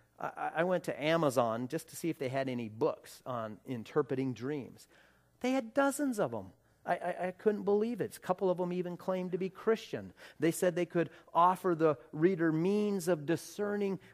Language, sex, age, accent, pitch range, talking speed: English, male, 40-59, American, 150-200 Hz, 190 wpm